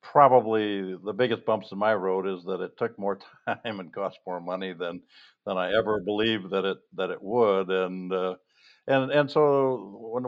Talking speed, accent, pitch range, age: 195 wpm, American, 90-105 Hz, 60-79